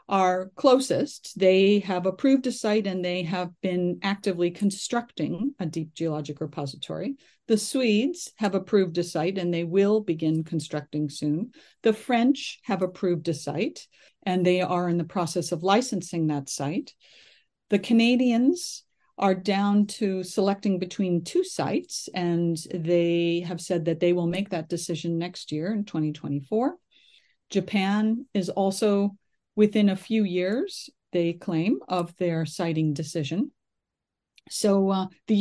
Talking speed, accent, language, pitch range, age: 140 wpm, American, English, 170-215 Hz, 50-69